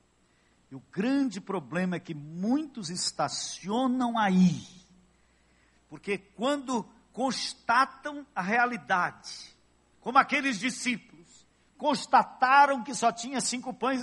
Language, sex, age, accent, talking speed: Portuguese, male, 60-79, Brazilian, 100 wpm